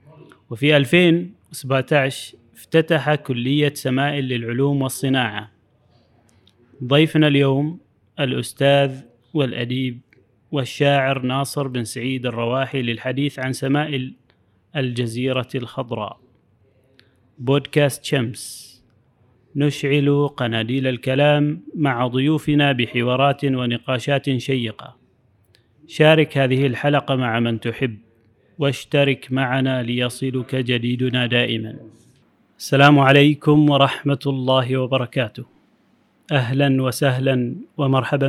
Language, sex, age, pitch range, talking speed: Arabic, male, 30-49, 125-145 Hz, 80 wpm